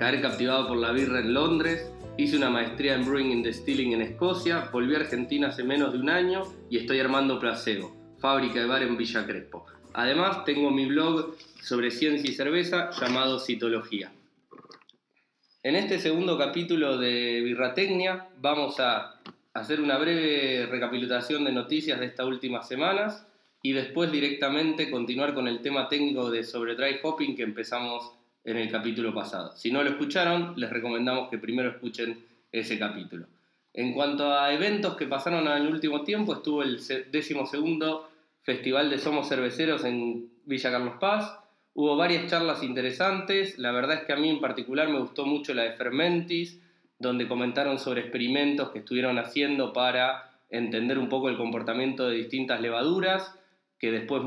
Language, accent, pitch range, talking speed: Spanish, Argentinian, 120-155 Hz, 165 wpm